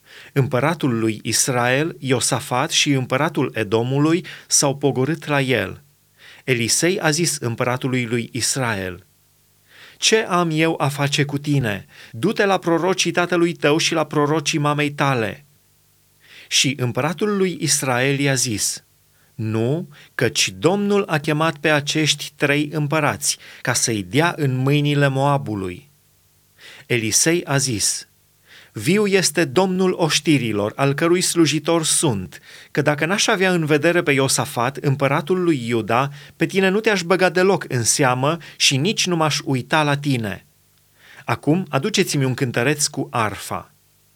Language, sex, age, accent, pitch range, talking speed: Romanian, male, 30-49, native, 130-165 Hz, 135 wpm